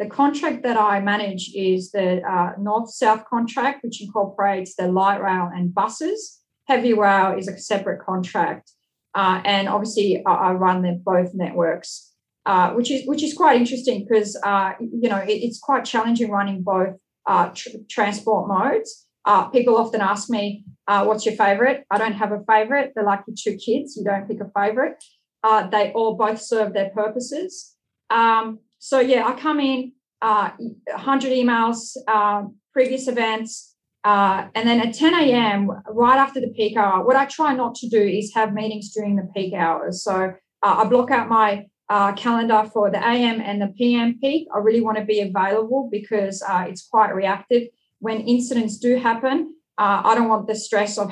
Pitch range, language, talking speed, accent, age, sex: 200-235 Hz, English, 185 wpm, Australian, 30-49, female